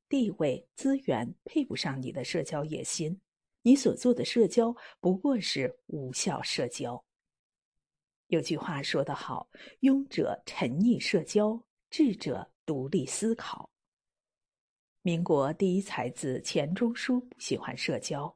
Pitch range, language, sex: 150-235 Hz, Chinese, female